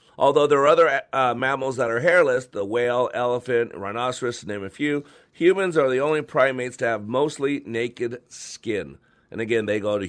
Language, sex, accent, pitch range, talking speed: English, male, American, 105-140 Hz, 190 wpm